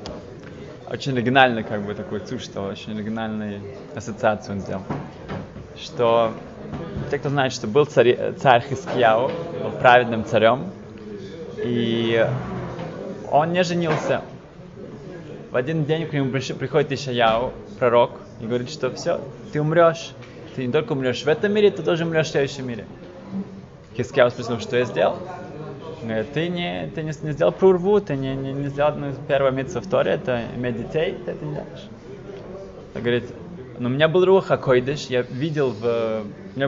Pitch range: 115-150 Hz